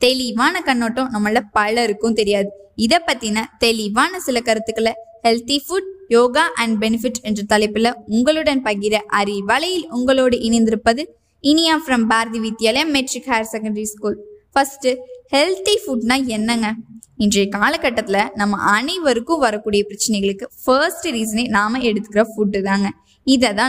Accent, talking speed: native, 120 wpm